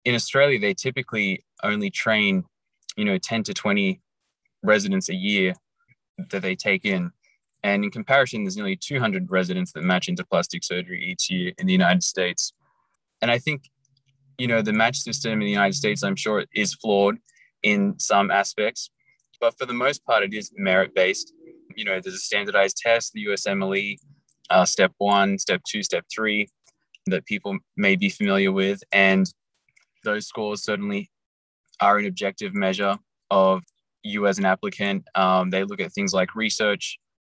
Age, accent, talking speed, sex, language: 20-39, Australian, 170 wpm, male, English